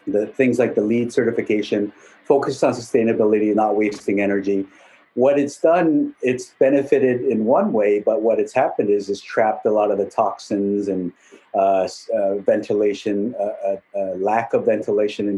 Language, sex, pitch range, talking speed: English, male, 105-125 Hz, 165 wpm